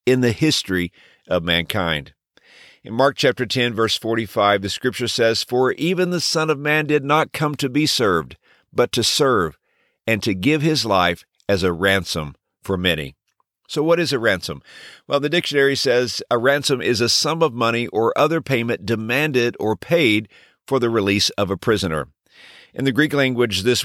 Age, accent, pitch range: 50-69, American, 105-145 Hz